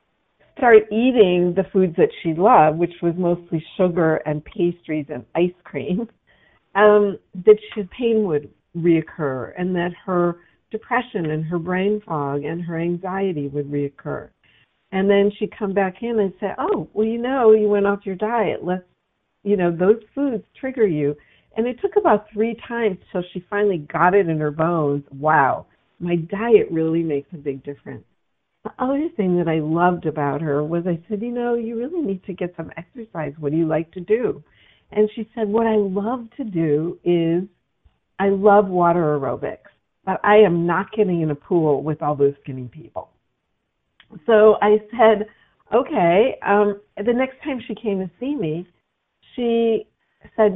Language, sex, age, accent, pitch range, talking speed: English, female, 50-69, American, 165-215 Hz, 175 wpm